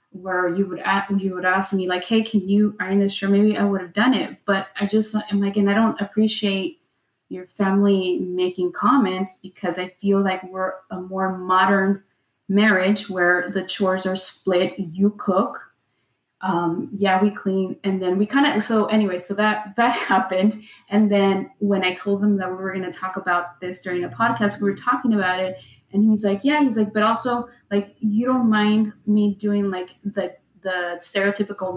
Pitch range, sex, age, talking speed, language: 185-215 Hz, female, 20-39, 200 wpm, English